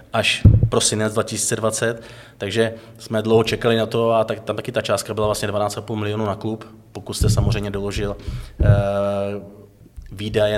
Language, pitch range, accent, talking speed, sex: Czech, 105-115 Hz, native, 140 wpm, male